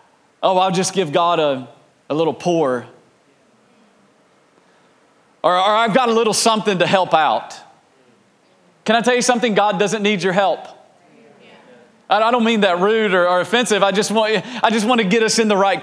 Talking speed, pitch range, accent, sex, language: 185 wpm, 190-230 Hz, American, male, English